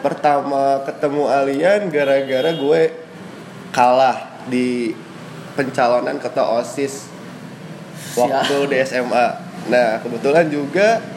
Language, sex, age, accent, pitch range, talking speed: Indonesian, male, 20-39, native, 130-190 Hz, 85 wpm